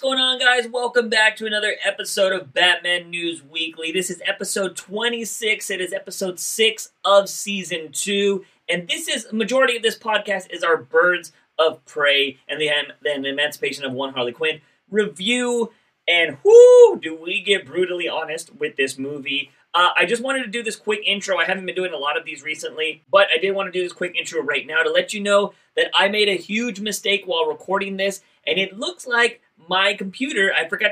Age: 30-49